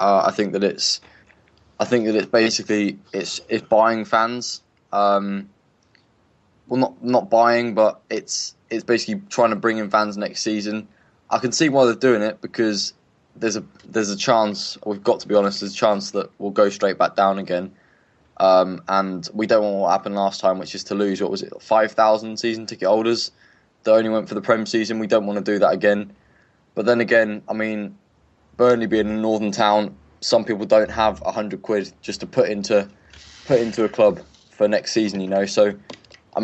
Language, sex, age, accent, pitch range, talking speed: English, male, 20-39, British, 100-115 Hz, 205 wpm